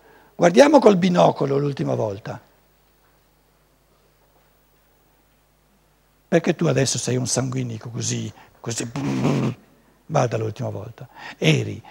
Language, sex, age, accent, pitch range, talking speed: Italian, male, 60-79, native, 125-190 Hz, 85 wpm